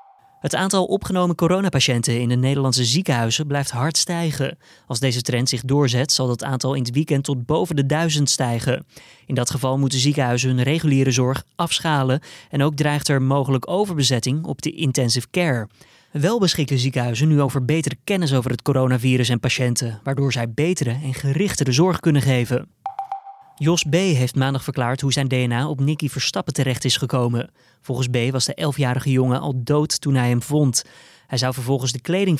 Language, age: Dutch, 20-39